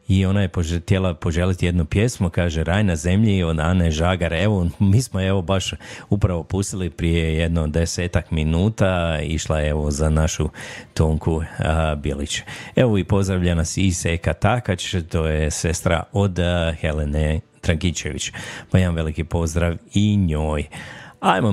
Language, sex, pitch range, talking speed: Croatian, male, 85-100 Hz, 145 wpm